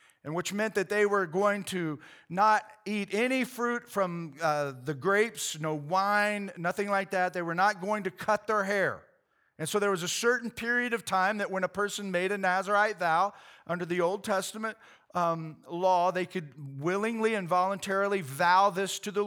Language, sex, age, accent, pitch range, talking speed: English, male, 40-59, American, 180-215 Hz, 190 wpm